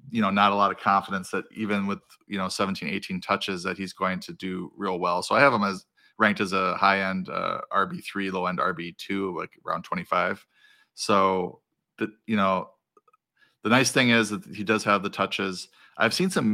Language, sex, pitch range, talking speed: English, male, 95-110 Hz, 200 wpm